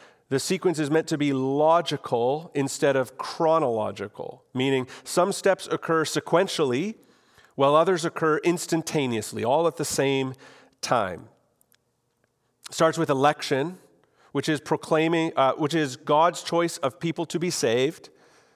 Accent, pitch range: American, 135-165 Hz